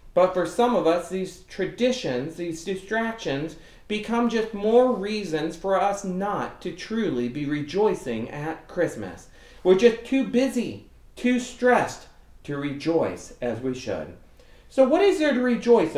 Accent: American